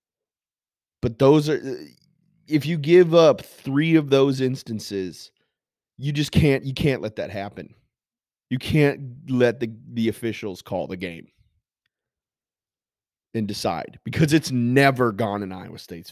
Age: 30-49